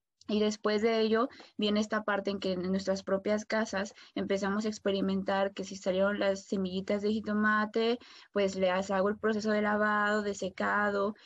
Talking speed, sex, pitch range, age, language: 170 wpm, female, 190-225 Hz, 20-39, Spanish